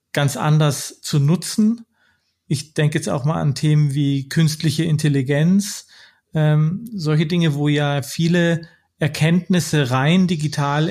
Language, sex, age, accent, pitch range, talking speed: German, male, 40-59, German, 140-165 Hz, 125 wpm